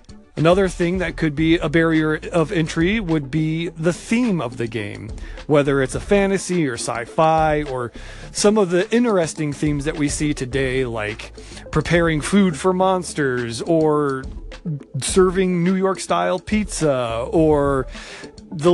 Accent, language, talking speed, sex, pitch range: American, English, 145 wpm, male, 135-180 Hz